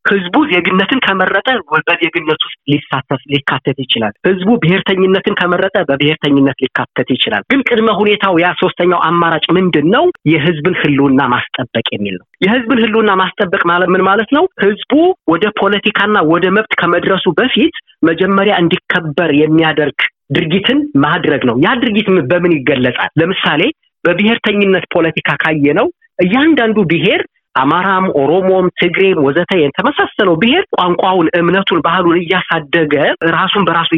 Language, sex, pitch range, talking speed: Amharic, male, 155-210 Hz, 120 wpm